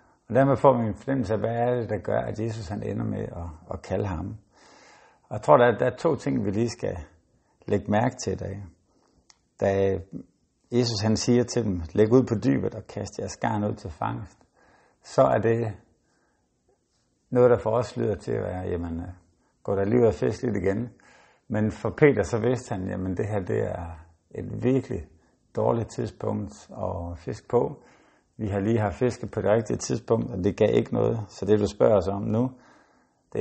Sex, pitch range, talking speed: male, 95-115 Hz, 205 wpm